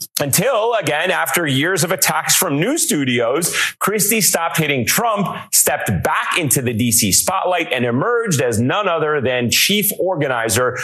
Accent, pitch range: American, 120-160 Hz